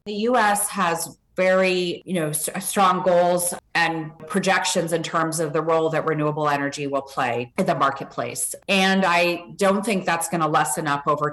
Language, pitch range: English, 165-185 Hz